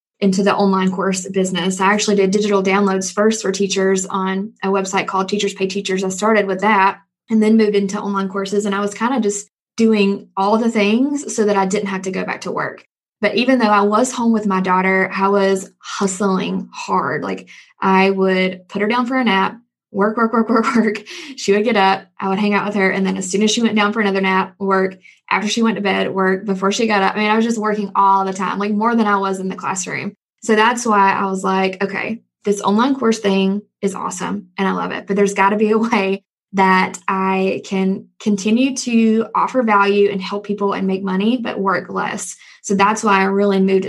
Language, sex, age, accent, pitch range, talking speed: English, female, 10-29, American, 195-215 Hz, 235 wpm